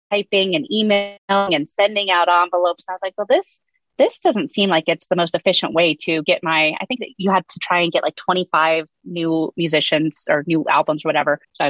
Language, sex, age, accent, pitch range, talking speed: English, female, 30-49, American, 170-225 Hz, 220 wpm